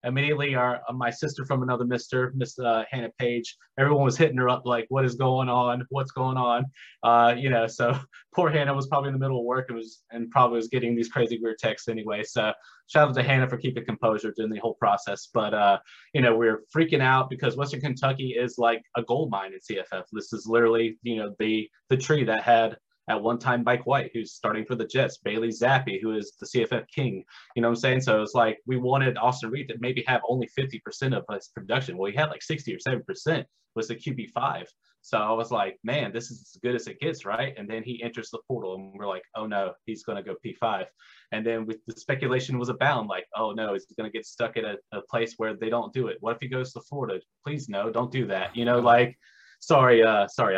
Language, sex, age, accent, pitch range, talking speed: English, male, 20-39, American, 115-130 Hz, 245 wpm